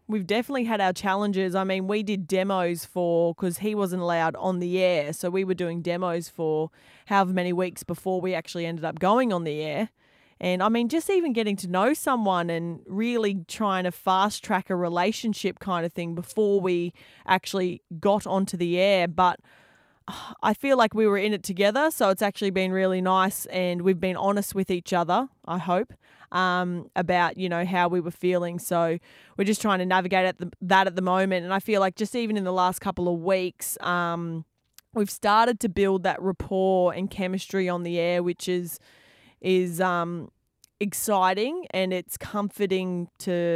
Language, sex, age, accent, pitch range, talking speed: English, female, 20-39, Australian, 175-205 Hz, 195 wpm